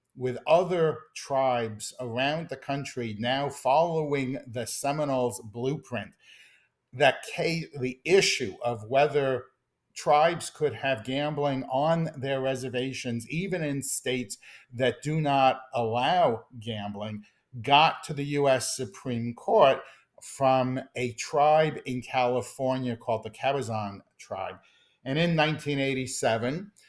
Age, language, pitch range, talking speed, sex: 50-69, English, 125-145 Hz, 110 wpm, male